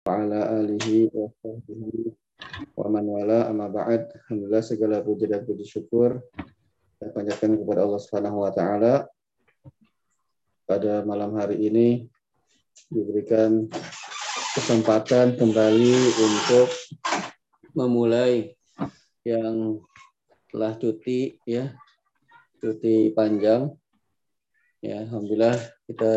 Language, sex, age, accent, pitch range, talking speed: Indonesian, male, 30-49, native, 105-115 Hz, 80 wpm